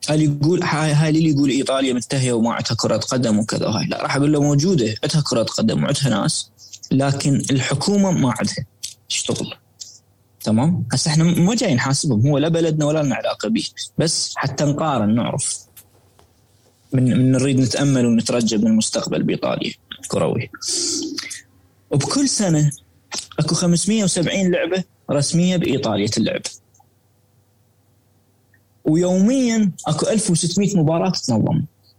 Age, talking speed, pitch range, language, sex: 20-39, 120 wpm, 115-165 Hz, Arabic, male